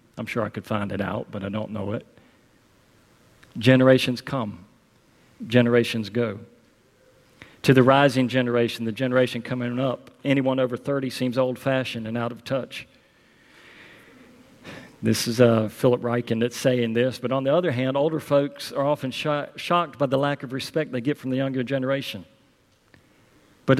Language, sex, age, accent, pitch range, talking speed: English, male, 40-59, American, 110-130 Hz, 160 wpm